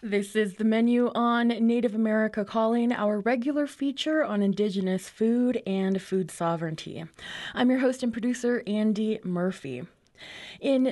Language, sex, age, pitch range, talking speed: English, female, 20-39, 190-235 Hz, 135 wpm